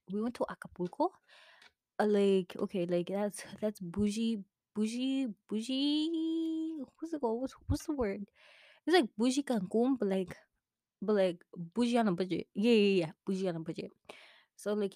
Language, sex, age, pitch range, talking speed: English, female, 20-39, 185-235 Hz, 165 wpm